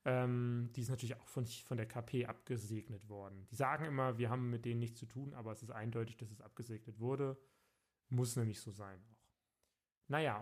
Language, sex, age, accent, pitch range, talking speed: German, male, 30-49, German, 115-135 Hz, 200 wpm